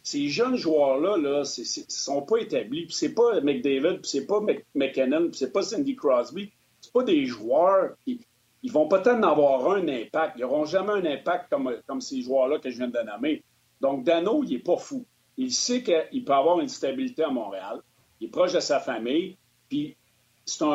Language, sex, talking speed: French, male, 200 wpm